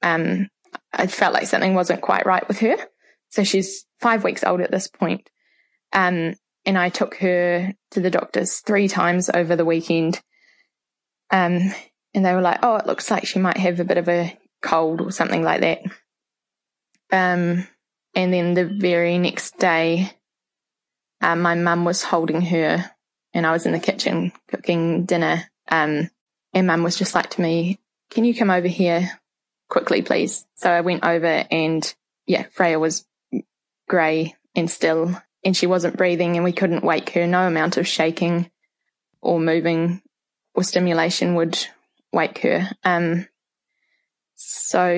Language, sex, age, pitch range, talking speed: English, female, 10-29, 170-190 Hz, 165 wpm